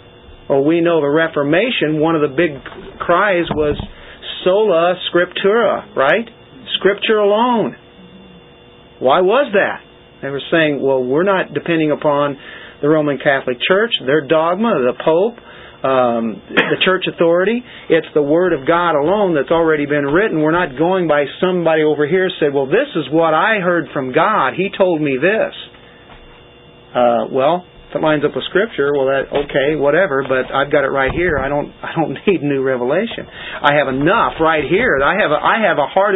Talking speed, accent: 175 wpm, American